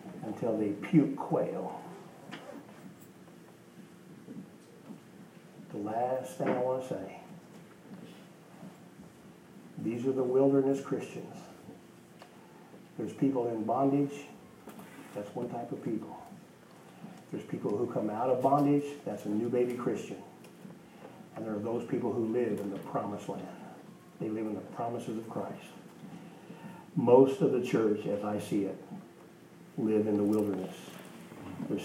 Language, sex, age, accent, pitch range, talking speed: English, male, 50-69, American, 110-140 Hz, 130 wpm